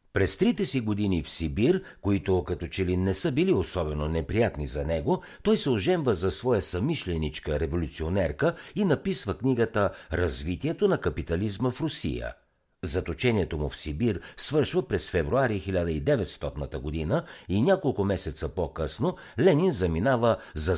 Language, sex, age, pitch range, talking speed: Bulgarian, male, 60-79, 80-125 Hz, 140 wpm